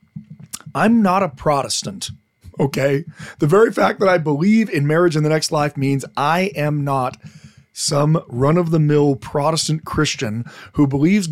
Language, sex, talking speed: English, male, 145 wpm